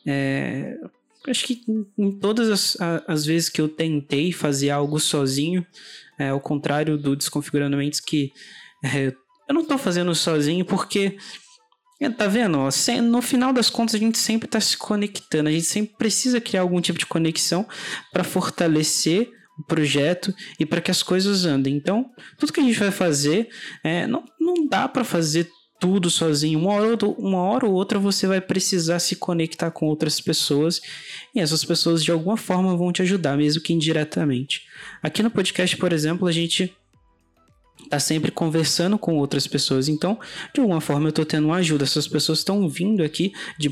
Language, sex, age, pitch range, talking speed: Portuguese, male, 20-39, 145-195 Hz, 175 wpm